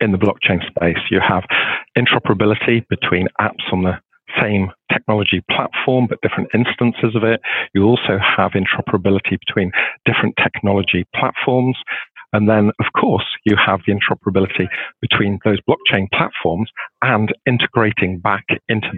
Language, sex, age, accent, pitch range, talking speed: English, male, 50-69, British, 95-110 Hz, 135 wpm